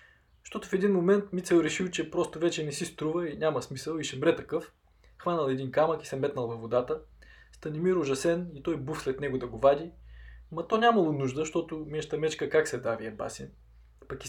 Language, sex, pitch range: Bulgarian, male, 130-185 Hz